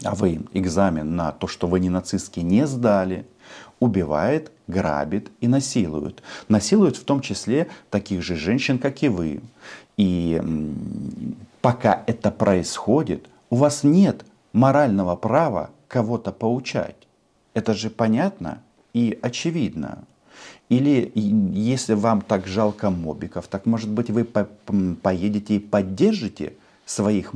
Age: 50-69